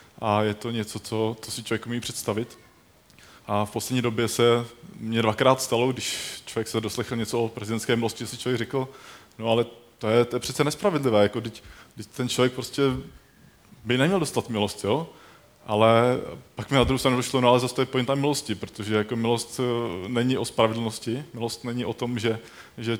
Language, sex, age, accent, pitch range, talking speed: Czech, male, 20-39, native, 115-130 Hz, 190 wpm